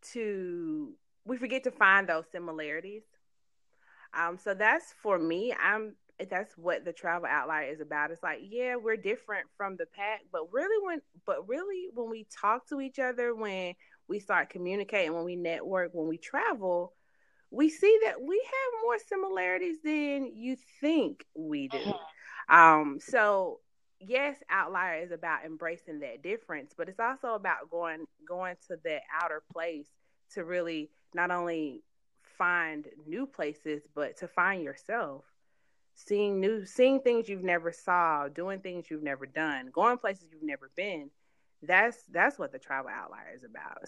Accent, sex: American, female